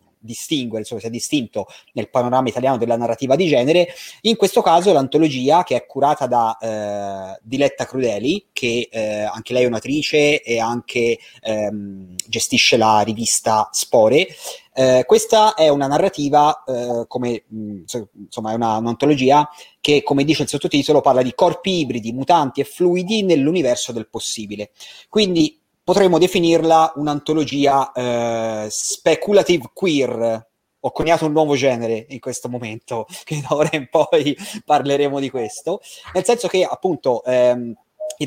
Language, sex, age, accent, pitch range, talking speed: Italian, male, 30-49, native, 120-165 Hz, 140 wpm